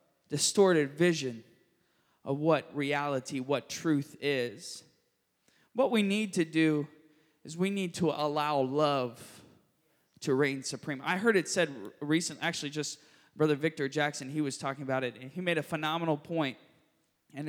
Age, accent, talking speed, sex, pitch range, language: 20-39, American, 150 wpm, male, 150-205 Hz, English